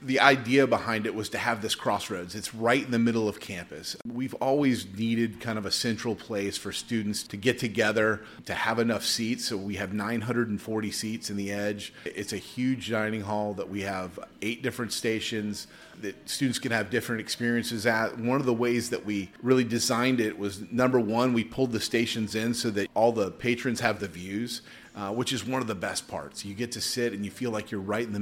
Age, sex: 30-49, male